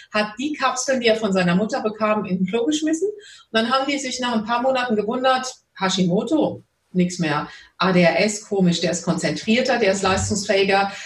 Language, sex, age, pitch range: German, female, 40-59, 190-245 Hz